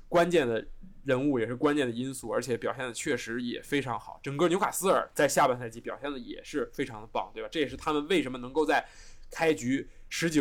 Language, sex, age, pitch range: Chinese, male, 20-39, 125-190 Hz